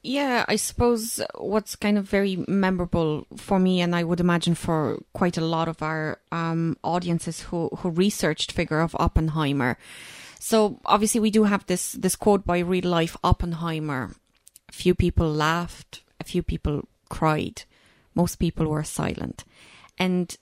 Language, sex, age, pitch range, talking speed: English, female, 20-39, 170-205 Hz, 155 wpm